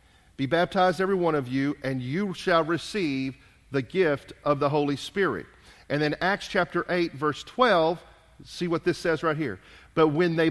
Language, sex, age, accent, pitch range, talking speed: English, male, 40-59, American, 140-195 Hz, 185 wpm